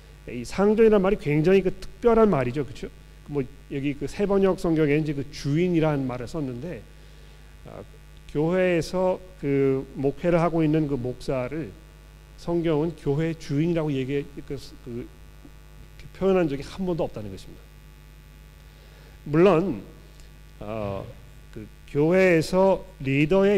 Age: 40-59